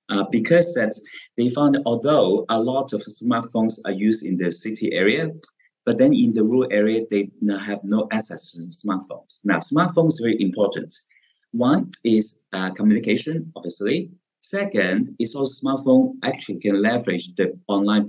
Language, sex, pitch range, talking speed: English, male, 105-155 Hz, 160 wpm